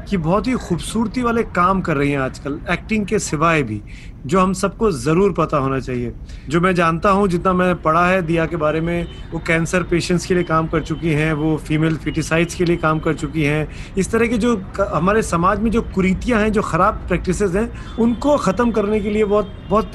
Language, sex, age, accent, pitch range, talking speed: Hindi, male, 30-49, native, 165-215 Hz, 215 wpm